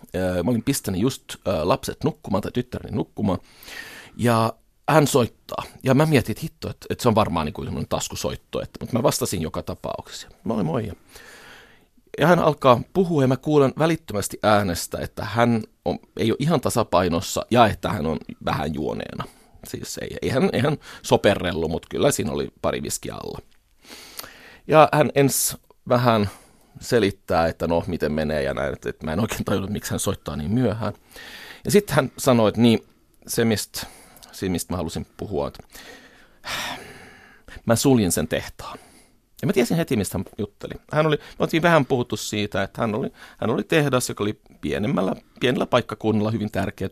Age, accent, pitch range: 30-49, native, 95-135 Hz